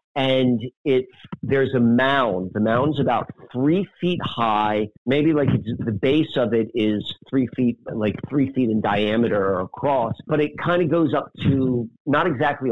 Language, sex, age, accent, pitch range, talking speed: English, male, 50-69, American, 120-155 Hz, 175 wpm